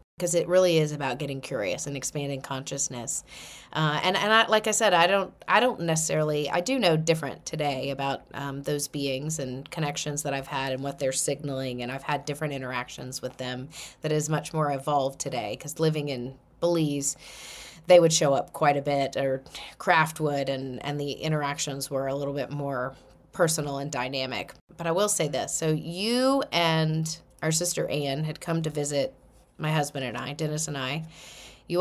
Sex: female